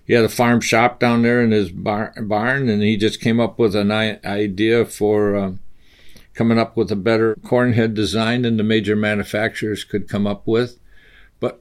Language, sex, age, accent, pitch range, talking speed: English, male, 60-79, American, 105-125 Hz, 195 wpm